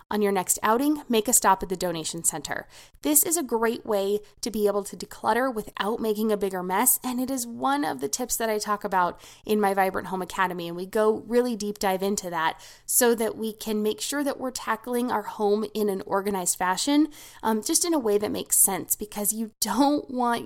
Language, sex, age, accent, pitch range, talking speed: English, female, 20-39, American, 190-255 Hz, 225 wpm